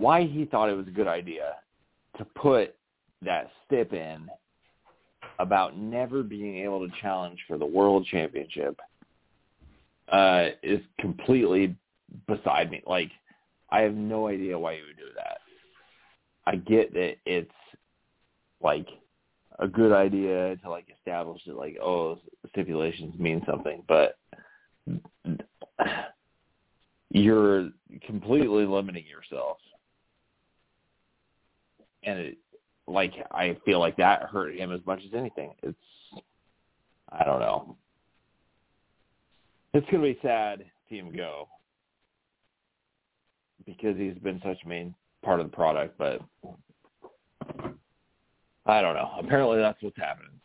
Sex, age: male, 30-49